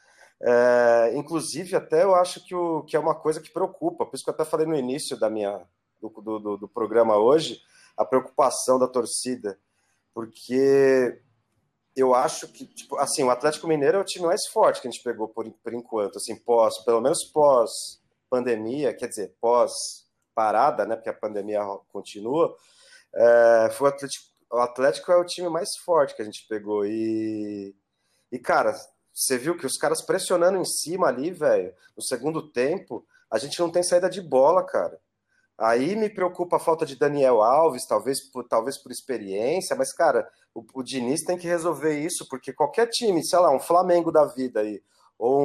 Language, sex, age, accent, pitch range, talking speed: Portuguese, male, 30-49, Brazilian, 115-175 Hz, 185 wpm